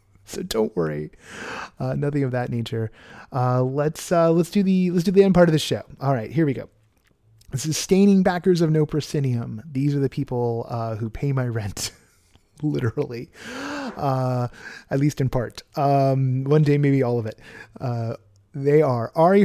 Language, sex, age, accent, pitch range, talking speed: English, male, 30-49, American, 115-145 Hz, 180 wpm